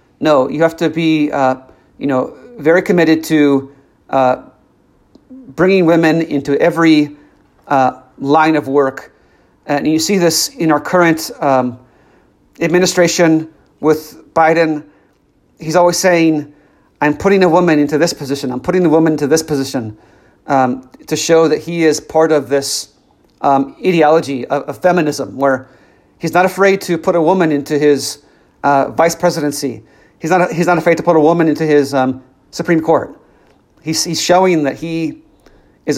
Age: 40-59